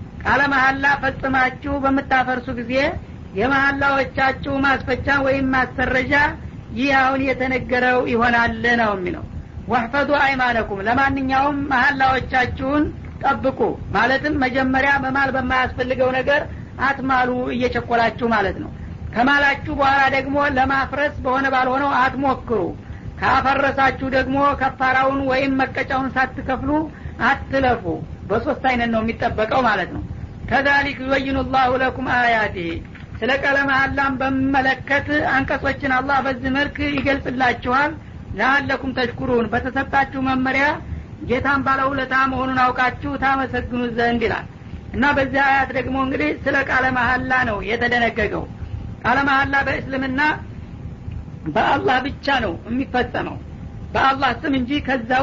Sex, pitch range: female, 255-275 Hz